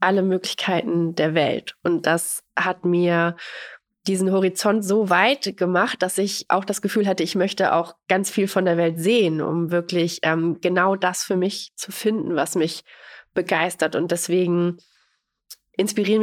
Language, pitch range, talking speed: German, 175-195 Hz, 160 wpm